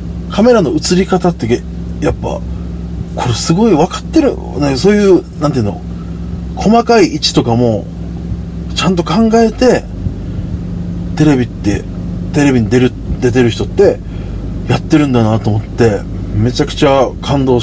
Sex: male